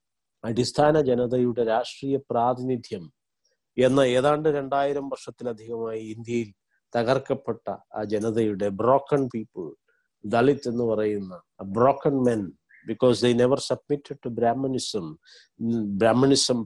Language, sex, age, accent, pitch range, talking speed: Malayalam, male, 50-69, native, 115-135 Hz, 70 wpm